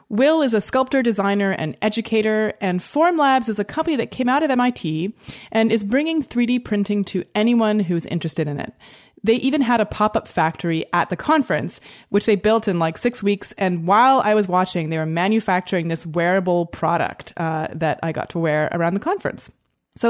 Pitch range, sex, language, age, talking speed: 175-250 Hz, female, English, 20-39, 195 wpm